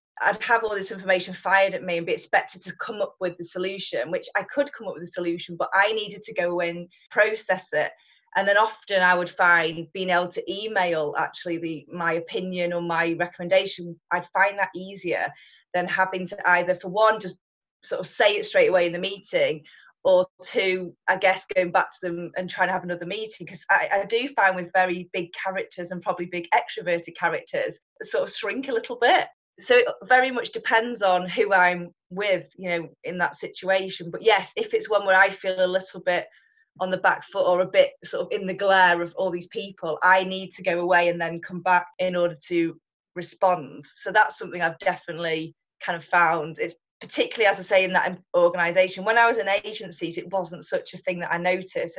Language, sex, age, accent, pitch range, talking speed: English, female, 20-39, British, 175-205 Hz, 215 wpm